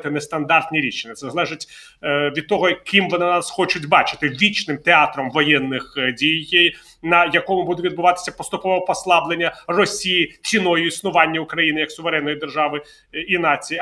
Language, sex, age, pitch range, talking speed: Ukrainian, male, 30-49, 150-185 Hz, 130 wpm